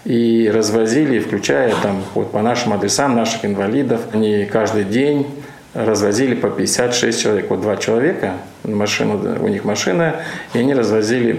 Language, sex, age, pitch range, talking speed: Russian, male, 50-69, 110-125 Hz, 140 wpm